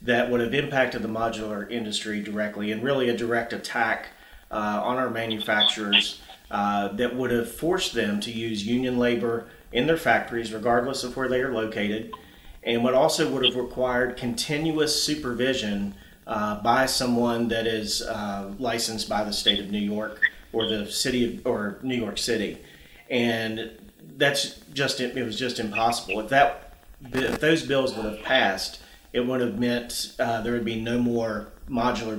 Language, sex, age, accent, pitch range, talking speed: English, male, 40-59, American, 105-125 Hz, 170 wpm